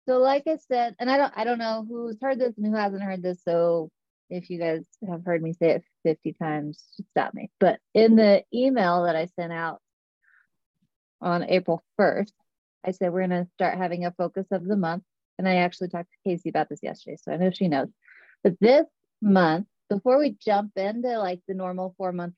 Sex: female